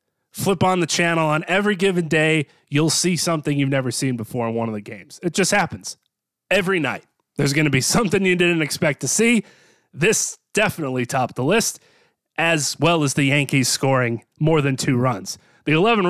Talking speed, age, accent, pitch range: 195 wpm, 30-49, American, 135-180 Hz